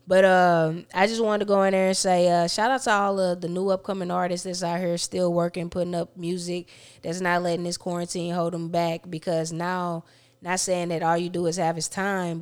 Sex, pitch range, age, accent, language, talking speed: female, 165-190 Hz, 20-39, American, English, 235 wpm